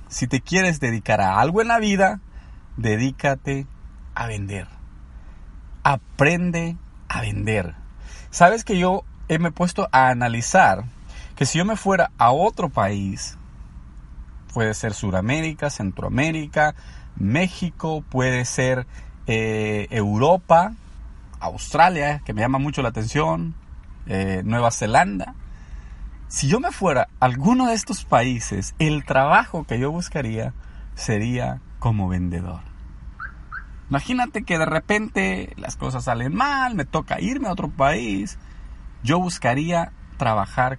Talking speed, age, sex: 125 wpm, 40-59, male